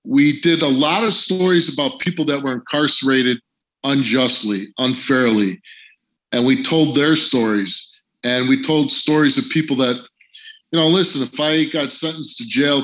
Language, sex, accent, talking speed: English, male, American, 160 wpm